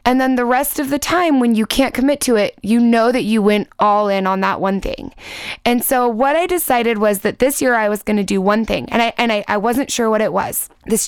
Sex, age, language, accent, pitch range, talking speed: female, 20-39, English, American, 205-260 Hz, 275 wpm